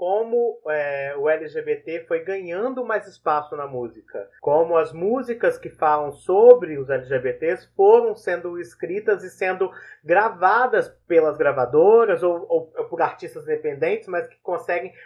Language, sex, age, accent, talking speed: Portuguese, male, 30-49, Brazilian, 135 wpm